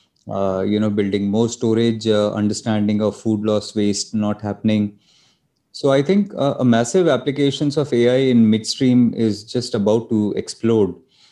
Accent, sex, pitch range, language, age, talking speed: Indian, male, 105-115 Hz, English, 20-39, 160 wpm